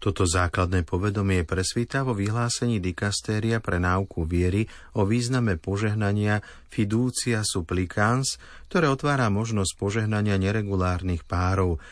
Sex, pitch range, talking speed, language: male, 90-115 Hz, 105 wpm, Slovak